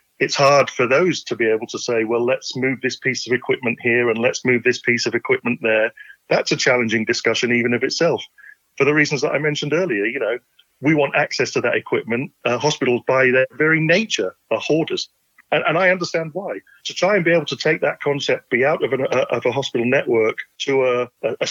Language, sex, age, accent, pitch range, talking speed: English, male, 40-59, British, 120-160 Hz, 220 wpm